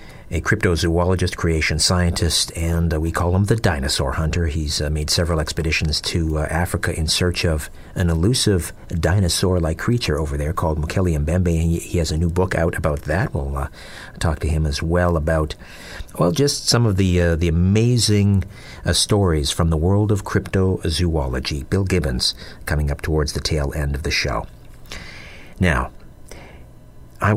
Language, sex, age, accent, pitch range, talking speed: English, male, 50-69, American, 75-95 Hz, 165 wpm